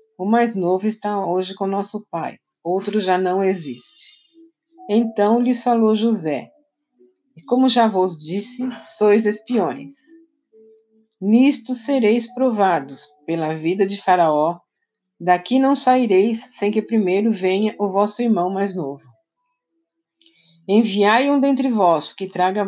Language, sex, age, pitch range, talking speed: Portuguese, female, 50-69, 185-250 Hz, 125 wpm